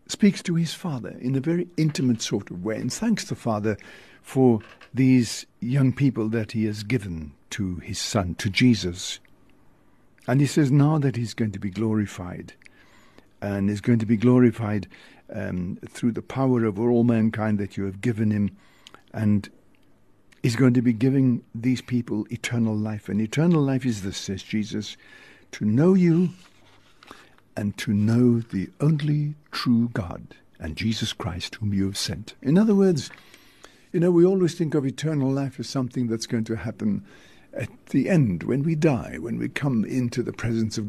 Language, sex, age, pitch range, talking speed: English, male, 60-79, 105-140 Hz, 175 wpm